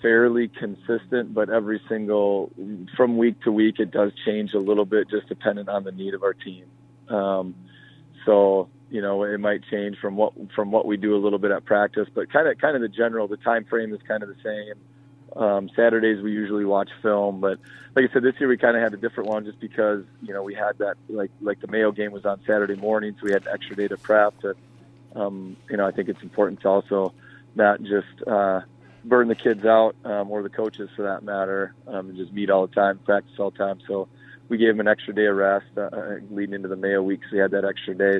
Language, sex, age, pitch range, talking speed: English, male, 40-59, 100-110 Hz, 245 wpm